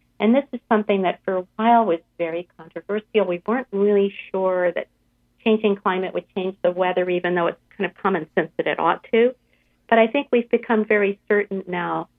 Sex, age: female, 50-69